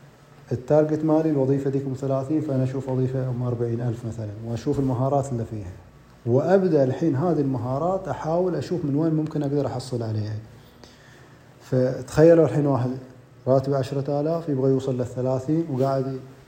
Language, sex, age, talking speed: Arabic, male, 30-49, 140 wpm